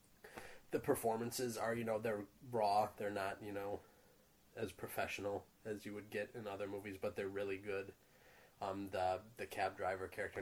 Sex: male